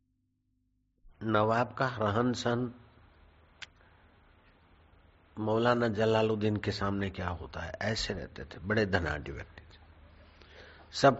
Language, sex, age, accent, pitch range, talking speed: Hindi, male, 50-69, native, 85-115 Hz, 90 wpm